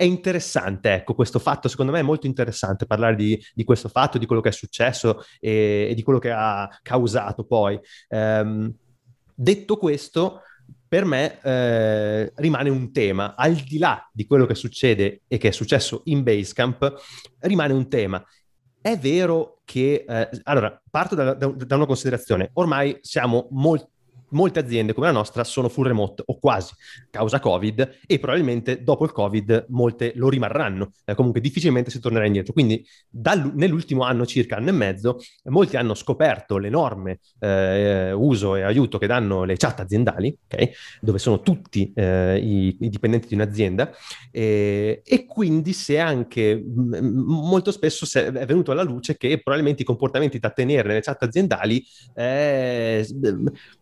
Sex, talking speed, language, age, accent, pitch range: male, 165 wpm, Italian, 30-49, native, 110-145 Hz